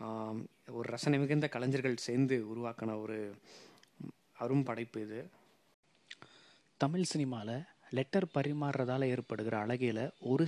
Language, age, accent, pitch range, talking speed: Tamil, 20-39, native, 115-140 Hz, 90 wpm